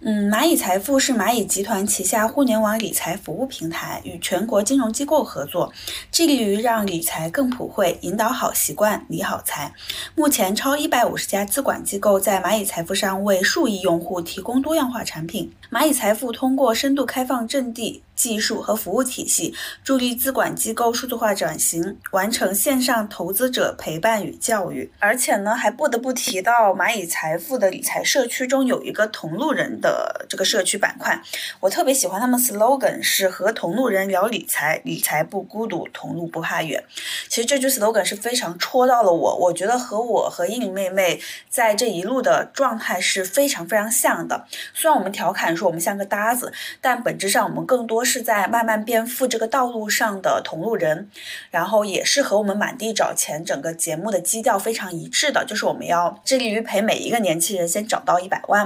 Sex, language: female, Chinese